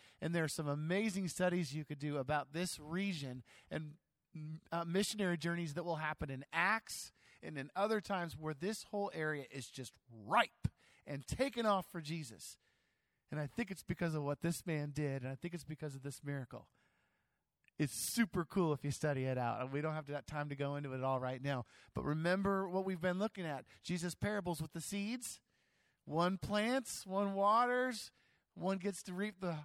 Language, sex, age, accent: English, male, 50-69, American